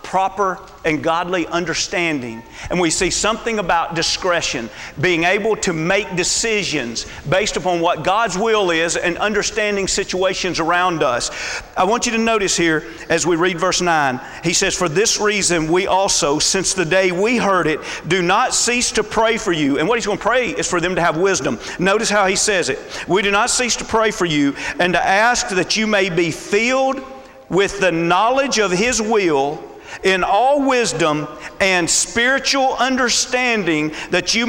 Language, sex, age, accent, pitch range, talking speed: English, male, 40-59, American, 175-225 Hz, 180 wpm